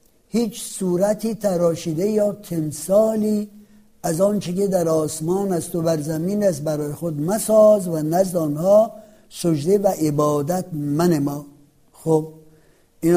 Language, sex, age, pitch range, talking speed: Persian, male, 60-79, 155-200 Hz, 130 wpm